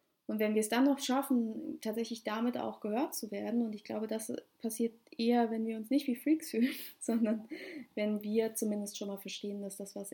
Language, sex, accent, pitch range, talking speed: German, female, German, 205-235 Hz, 215 wpm